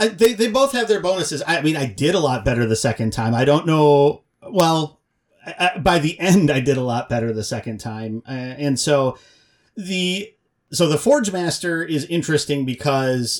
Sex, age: male, 30-49